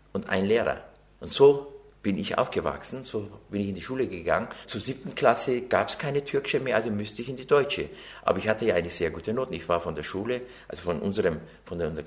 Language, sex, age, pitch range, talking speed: German, male, 50-69, 80-110 Hz, 235 wpm